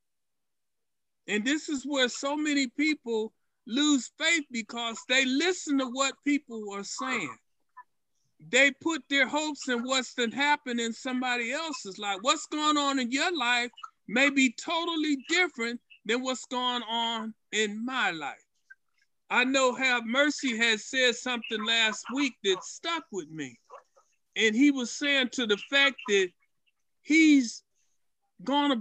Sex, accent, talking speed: male, American, 145 wpm